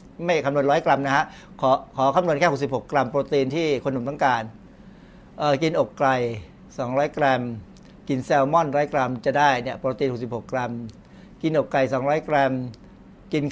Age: 60-79